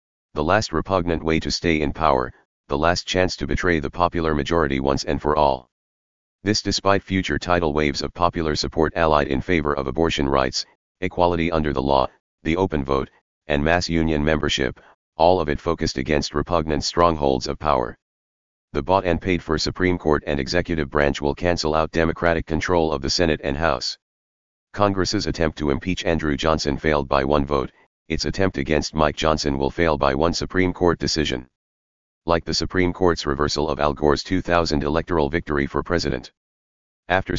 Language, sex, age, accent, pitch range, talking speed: English, male, 40-59, American, 70-85 Hz, 175 wpm